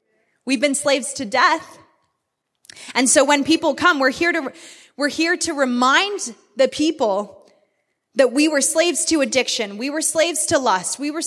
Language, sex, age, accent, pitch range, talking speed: English, female, 20-39, American, 235-320 Hz, 170 wpm